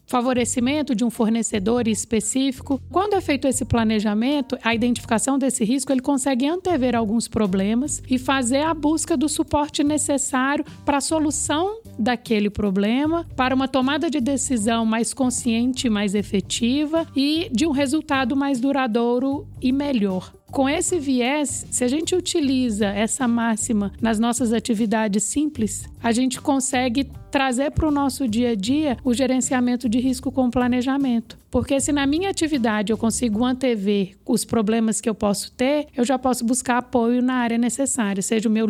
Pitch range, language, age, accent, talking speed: 225-285 Hz, Portuguese, 50-69, Brazilian, 160 wpm